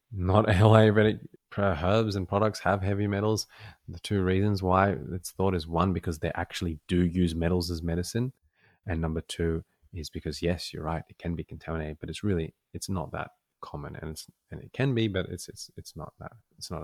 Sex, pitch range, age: male, 85-105 Hz, 20-39